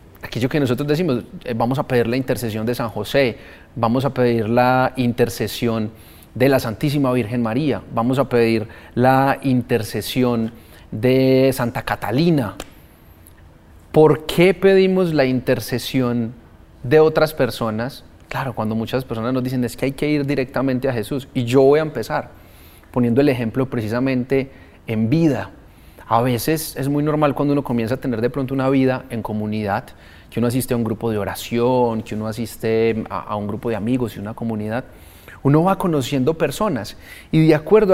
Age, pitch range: 30-49, 110-135 Hz